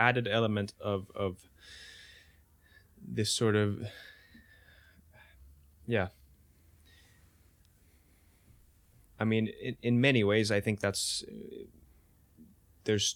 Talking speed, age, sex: 80 wpm, 20-39, male